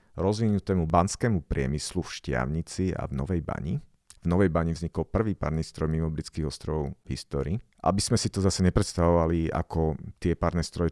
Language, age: Slovak, 40-59